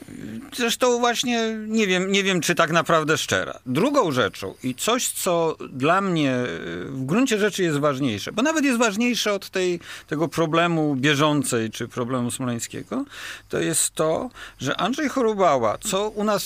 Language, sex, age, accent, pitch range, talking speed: Polish, male, 50-69, native, 125-190 Hz, 155 wpm